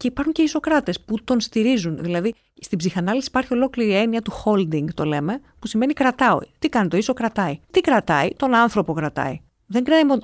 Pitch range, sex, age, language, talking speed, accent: 175-250 Hz, female, 30-49, Greek, 195 wpm, native